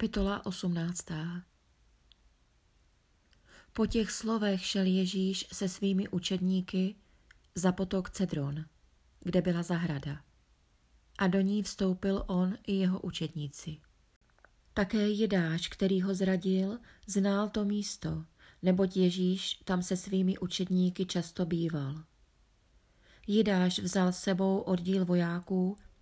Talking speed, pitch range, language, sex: 105 wpm, 175-195 Hz, Czech, female